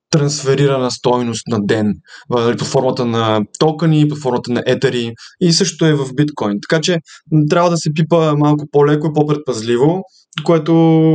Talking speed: 150 wpm